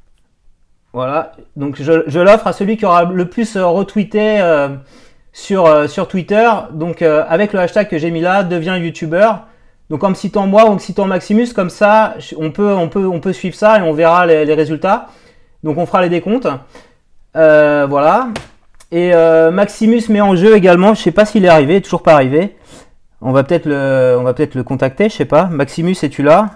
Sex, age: male, 30-49